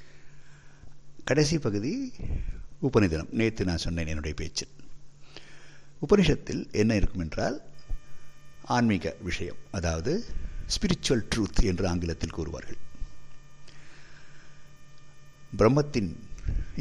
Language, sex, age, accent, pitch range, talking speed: Tamil, male, 60-79, native, 85-140 Hz, 75 wpm